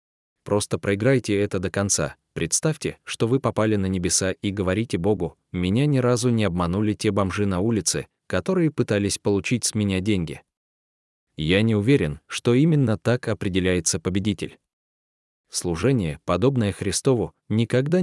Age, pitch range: 20-39, 95-120 Hz